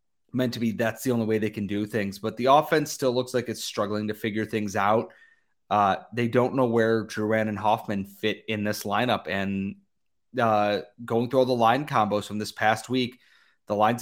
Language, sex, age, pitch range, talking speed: English, male, 30-49, 105-125 Hz, 210 wpm